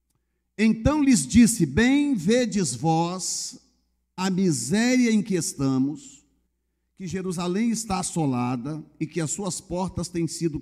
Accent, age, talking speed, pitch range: Brazilian, 50-69, 125 wpm, 175-255 Hz